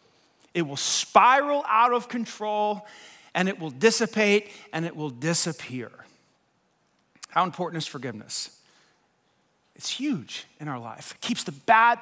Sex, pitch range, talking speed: male, 180-265 Hz, 135 wpm